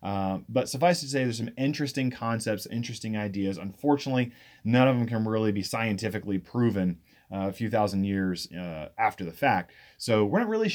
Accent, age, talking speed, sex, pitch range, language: American, 30-49, 185 wpm, male, 100-130 Hz, English